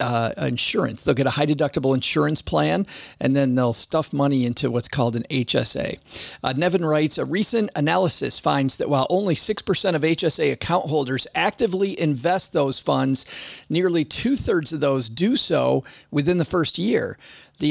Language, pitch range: English, 140-180 Hz